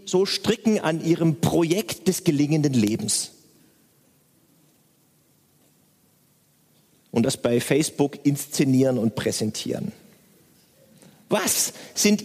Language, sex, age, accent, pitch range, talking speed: German, male, 40-59, German, 150-205 Hz, 85 wpm